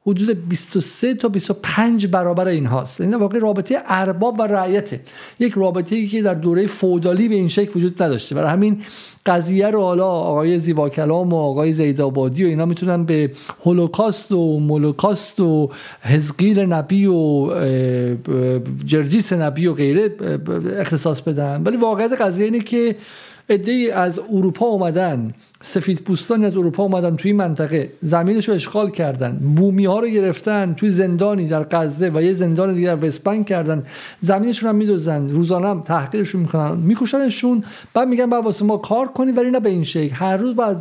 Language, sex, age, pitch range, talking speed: Persian, male, 50-69, 165-210 Hz, 160 wpm